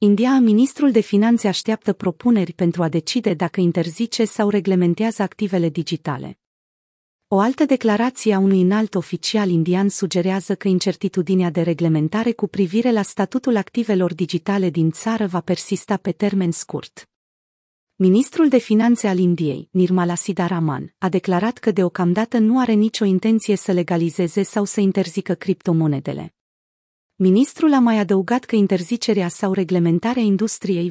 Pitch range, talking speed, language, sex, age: 180-220 Hz, 140 wpm, Romanian, female, 40-59